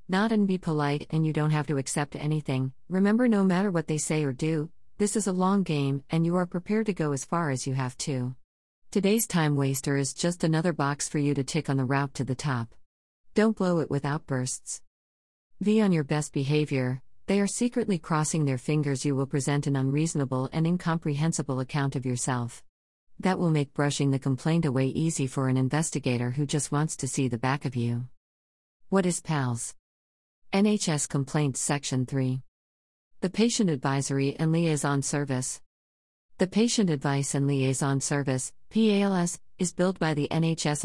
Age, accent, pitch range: 50-69, American, 135-165 Hz